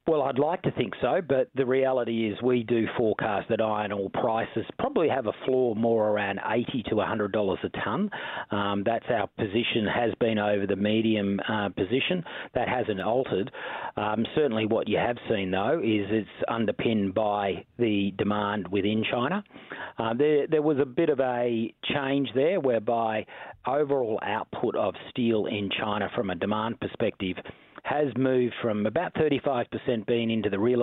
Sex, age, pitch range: male, 40-59, 105-125 Hz